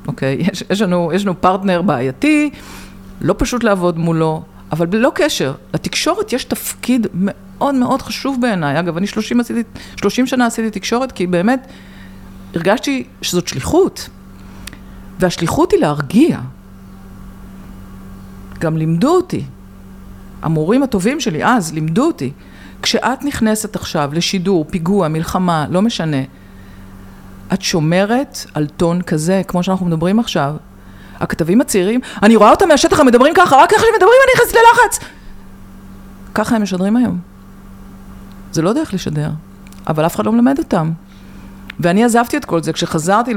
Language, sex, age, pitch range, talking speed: Hebrew, female, 50-69, 135-220 Hz, 140 wpm